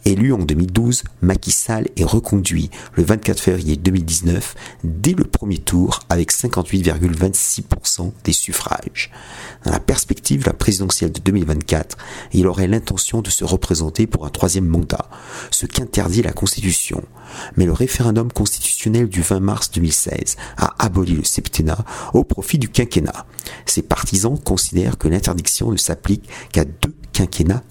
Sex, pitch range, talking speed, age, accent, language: male, 85-110 Hz, 145 wpm, 50-69, French, French